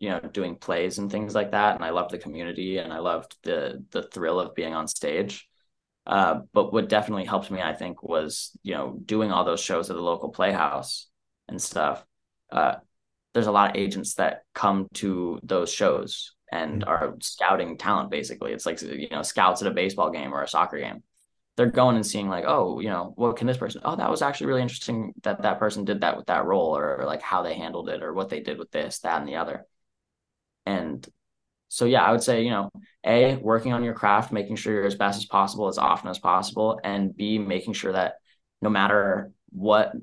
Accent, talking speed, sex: American, 225 wpm, male